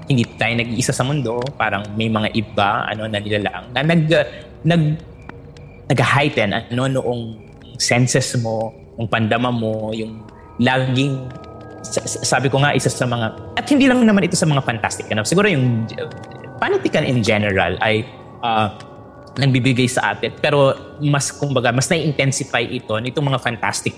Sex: male